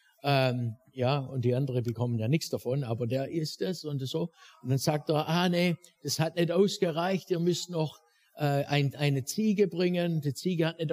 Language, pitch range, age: German, 135-180 Hz, 60-79